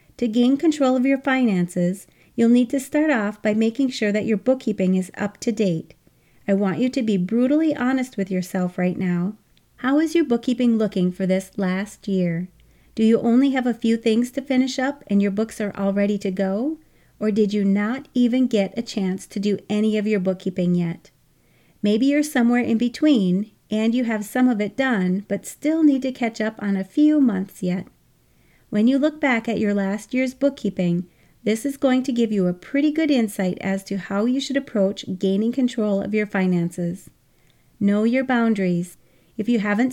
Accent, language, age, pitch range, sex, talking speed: American, English, 40-59, 195-255 Hz, female, 200 wpm